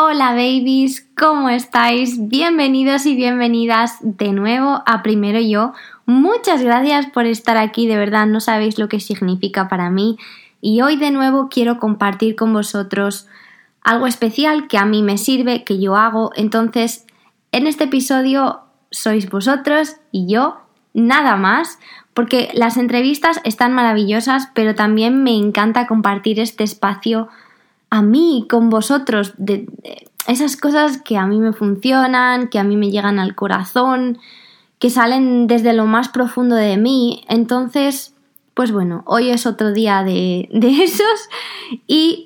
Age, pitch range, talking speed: 20-39, 215-260 Hz, 150 wpm